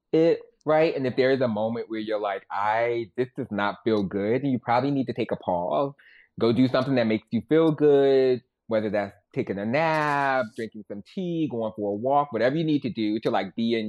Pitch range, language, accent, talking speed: 110-145 Hz, English, American, 230 wpm